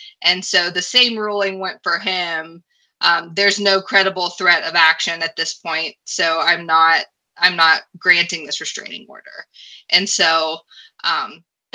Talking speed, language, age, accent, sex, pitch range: 155 wpm, English, 20-39, American, female, 195-260 Hz